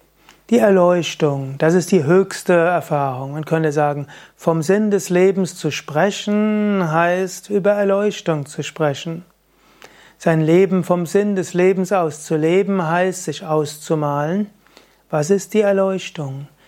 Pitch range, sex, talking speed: 155-190 Hz, male, 135 wpm